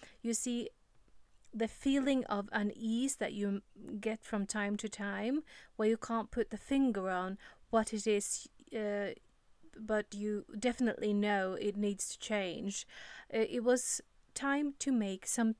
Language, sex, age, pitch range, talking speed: English, female, 30-49, 200-235 Hz, 145 wpm